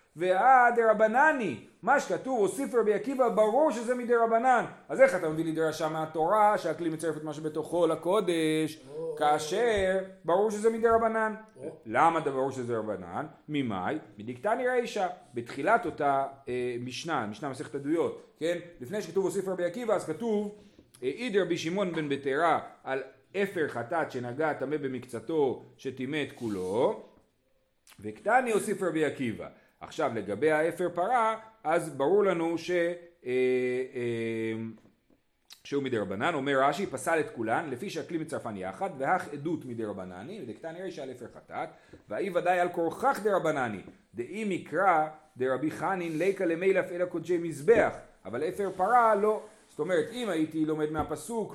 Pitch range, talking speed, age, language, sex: 150-210 Hz, 135 wpm, 40-59, Hebrew, male